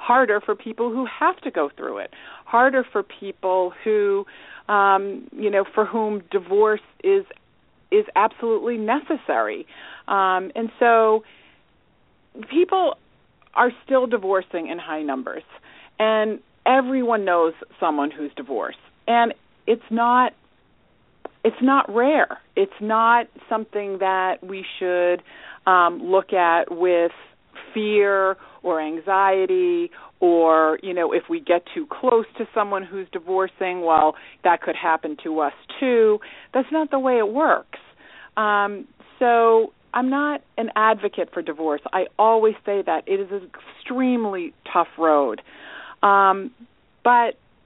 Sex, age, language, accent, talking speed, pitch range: female, 40-59, English, American, 130 wpm, 190-260 Hz